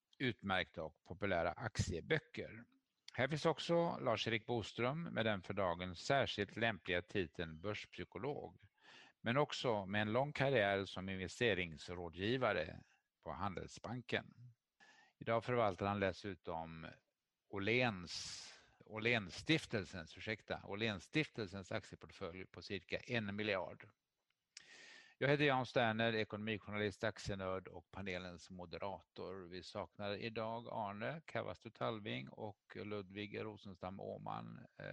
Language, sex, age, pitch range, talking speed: English, male, 50-69, 95-115 Hz, 105 wpm